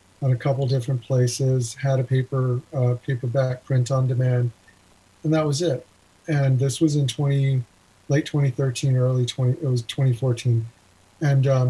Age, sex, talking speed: 40-59, male, 150 wpm